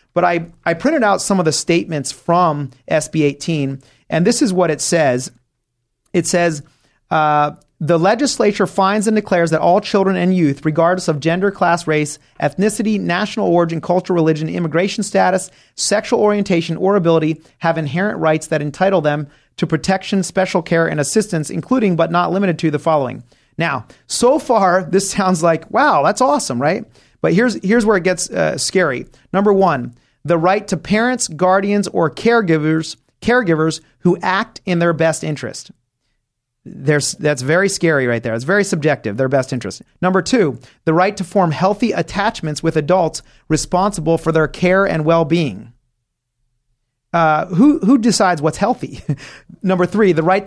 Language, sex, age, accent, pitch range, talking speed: English, male, 30-49, American, 150-195 Hz, 165 wpm